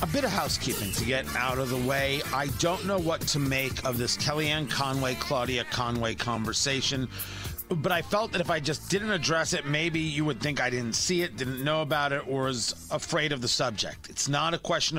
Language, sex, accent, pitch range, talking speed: English, male, American, 125-165 Hz, 220 wpm